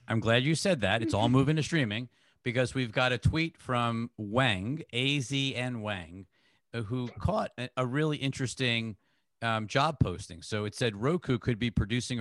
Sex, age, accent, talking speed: male, 50-69, American, 165 wpm